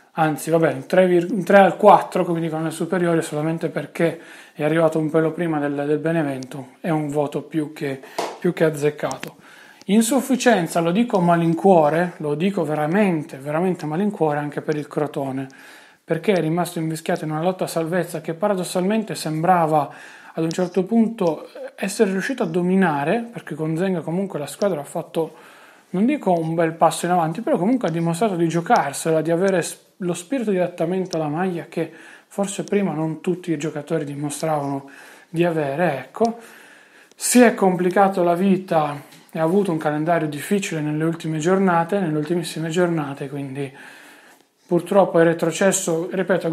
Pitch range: 160-185 Hz